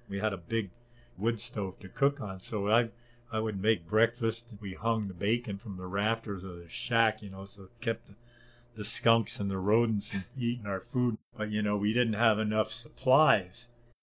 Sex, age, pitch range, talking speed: male, 50-69, 105-120 Hz, 200 wpm